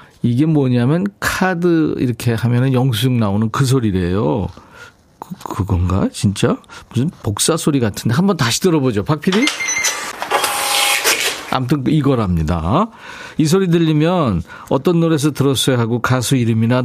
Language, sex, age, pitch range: Korean, male, 40-59, 105-155 Hz